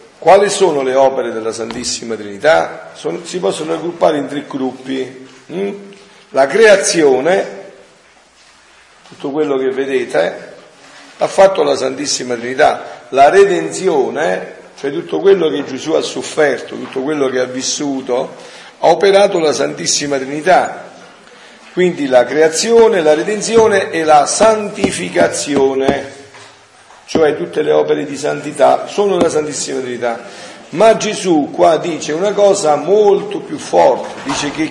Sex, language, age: male, Italian, 50-69